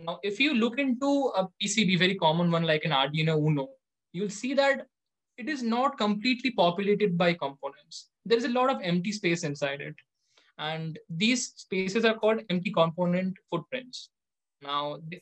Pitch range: 160-210 Hz